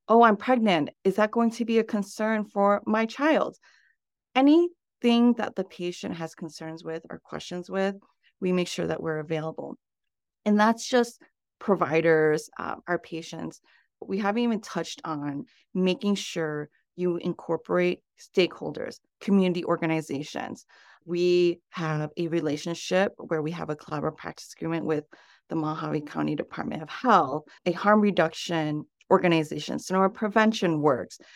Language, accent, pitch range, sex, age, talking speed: English, American, 160-205 Hz, female, 30-49, 140 wpm